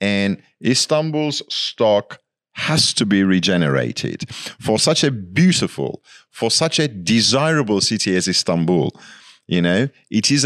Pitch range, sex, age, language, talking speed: 100-150 Hz, male, 50-69, English, 125 wpm